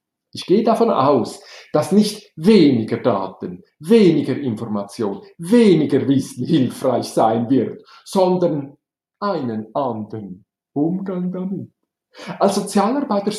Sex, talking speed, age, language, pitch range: male, 100 wpm, 50-69, German, 135-215 Hz